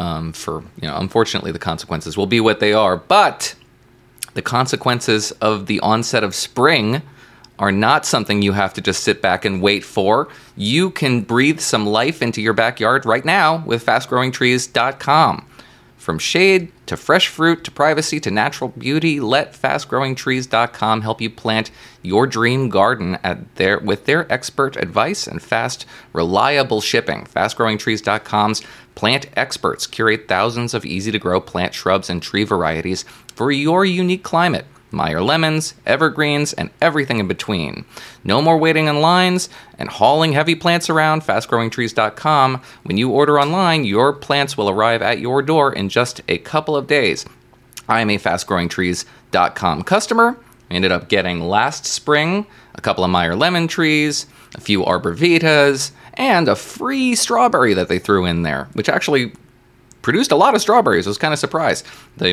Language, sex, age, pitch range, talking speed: English, male, 30-49, 105-150 Hz, 160 wpm